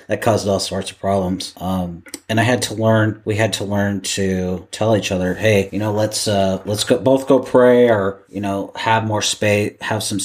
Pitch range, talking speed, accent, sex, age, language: 95-110 Hz, 225 wpm, American, male, 30-49, English